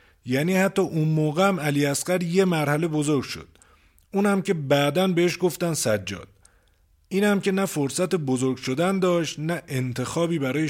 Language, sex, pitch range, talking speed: Persian, male, 115-170 Hz, 140 wpm